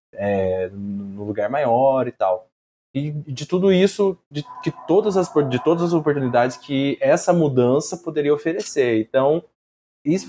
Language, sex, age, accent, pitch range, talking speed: Portuguese, male, 20-39, Brazilian, 110-145 Hz, 145 wpm